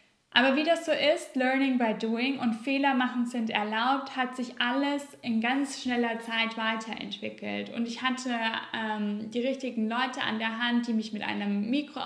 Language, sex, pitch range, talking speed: German, female, 220-255 Hz, 180 wpm